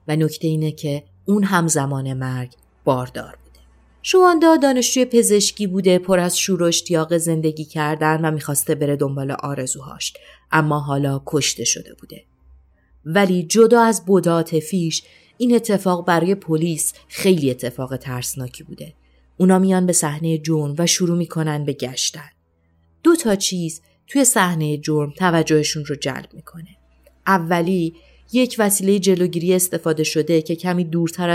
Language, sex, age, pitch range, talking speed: Persian, female, 30-49, 145-190 Hz, 135 wpm